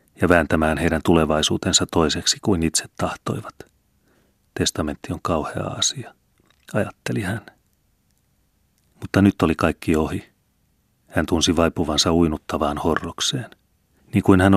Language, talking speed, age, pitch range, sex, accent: Finnish, 110 wpm, 30-49, 80-90 Hz, male, native